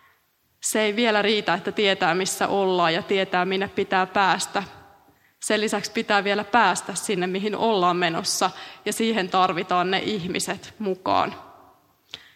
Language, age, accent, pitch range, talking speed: Finnish, 20-39, native, 190-220 Hz, 135 wpm